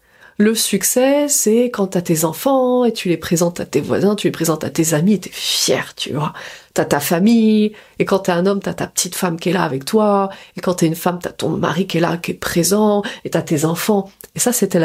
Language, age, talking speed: French, 30-49, 285 wpm